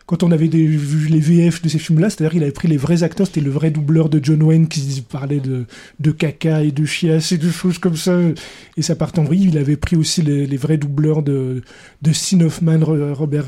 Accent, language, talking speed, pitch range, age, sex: French, French, 245 wpm, 150-170 Hz, 20-39, male